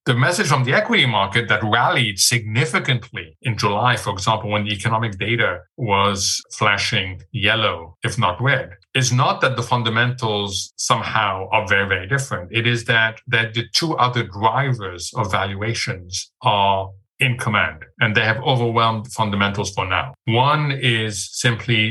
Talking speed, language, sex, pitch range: 155 wpm, English, male, 105-125 Hz